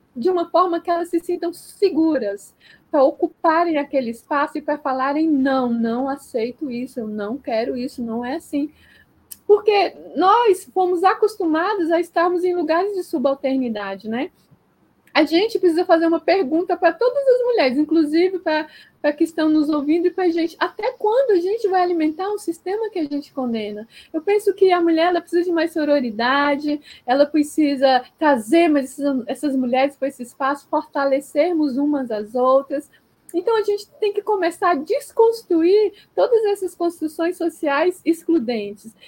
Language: Portuguese